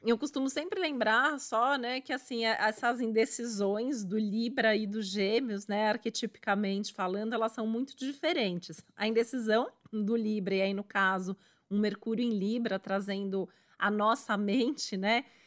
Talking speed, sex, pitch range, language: 150 wpm, female, 205-245 Hz, Portuguese